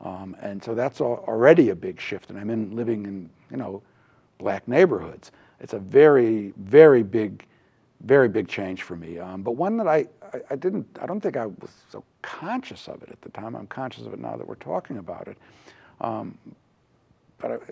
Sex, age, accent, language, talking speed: male, 60-79, American, English, 200 wpm